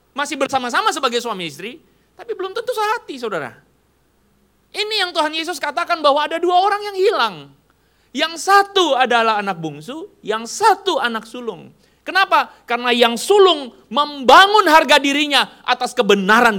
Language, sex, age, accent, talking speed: Indonesian, male, 30-49, native, 140 wpm